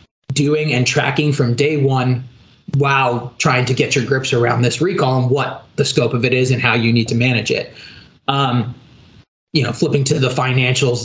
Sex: male